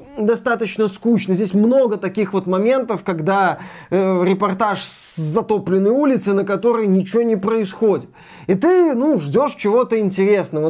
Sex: male